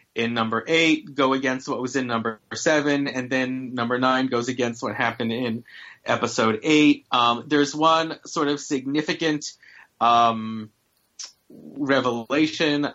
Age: 30-49